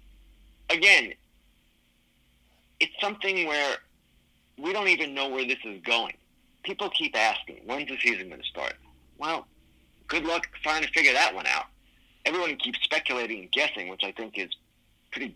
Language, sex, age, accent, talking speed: English, male, 50-69, American, 155 wpm